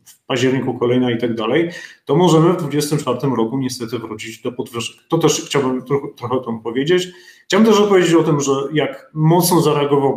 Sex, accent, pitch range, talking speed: male, native, 135-170 Hz, 185 wpm